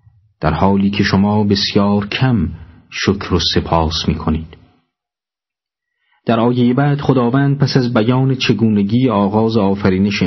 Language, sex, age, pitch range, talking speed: Persian, male, 40-59, 85-110 Hz, 125 wpm